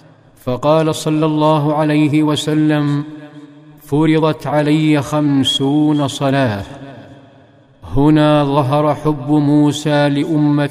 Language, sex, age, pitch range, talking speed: Arabic, male, 50-69, 140-155 Hz, 80 wpm